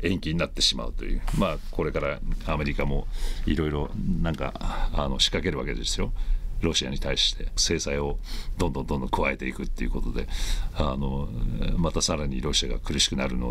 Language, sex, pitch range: Japanese, male, 65-90 Hz